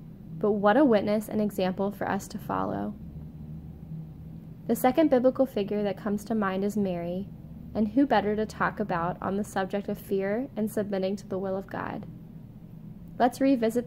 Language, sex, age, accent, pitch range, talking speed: English, female, 10-29, American, 180-220 Hz, 175 wpm